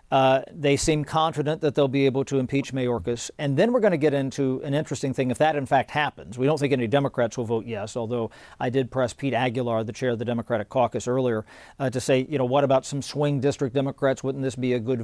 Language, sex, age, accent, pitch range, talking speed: English, male, 50-69, American, 125-150 Hz, 250 wpm